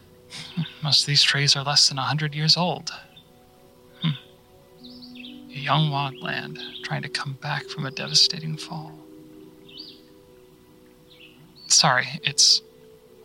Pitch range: 125-165 Hz